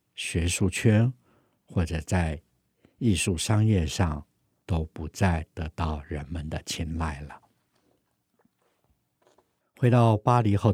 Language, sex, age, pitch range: Chinese, male, 60-79, 80-105 Hz